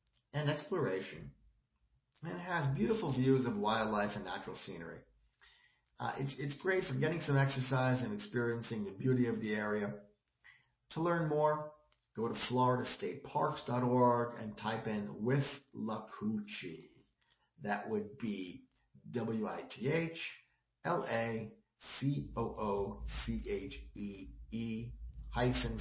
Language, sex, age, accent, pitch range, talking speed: English, male, 50-69, American, 110-140 Hz, 130 wpm